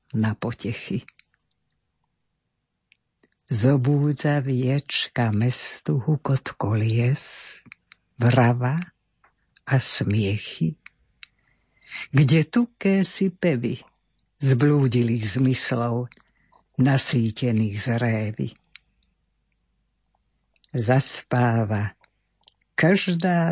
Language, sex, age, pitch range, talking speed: Slovak, female, 60-79, 120-150 Hz, 50 wpm